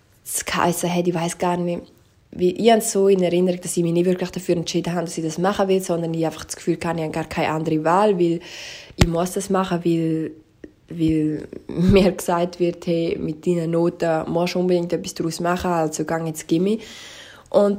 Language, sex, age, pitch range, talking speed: German, female, 20-39, 165-185 Hz, 200 wpm